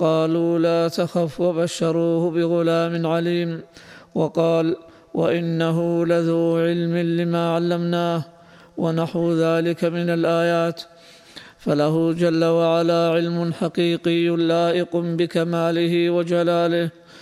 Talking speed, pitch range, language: 85 wpm, 165-170 Hz, Arabic